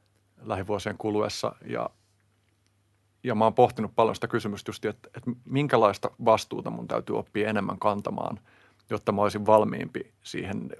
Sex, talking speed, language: male, 140 wpm, Finnish